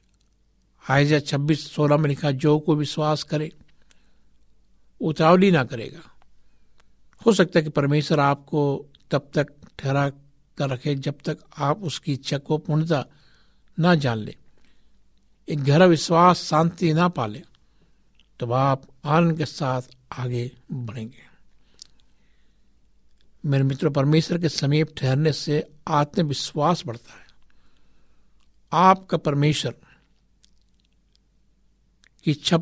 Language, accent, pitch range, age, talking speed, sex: Hindi, native, 135-160 Hz, 60-79, 105 wpm, male